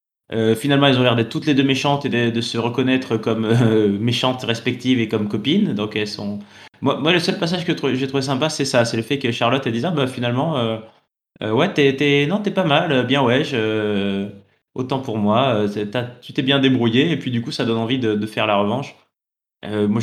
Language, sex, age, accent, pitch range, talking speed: French, male, 20-39, French, 105-135 Hz, 245 wpm